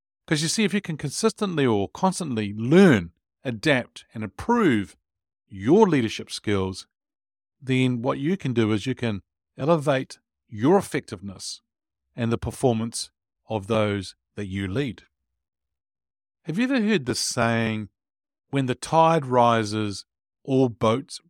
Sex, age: male, 50-69